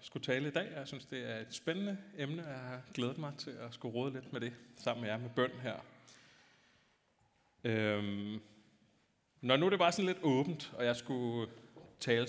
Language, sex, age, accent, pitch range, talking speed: Danish, male, 30-49, native, 110-140 Hz, 195 wpm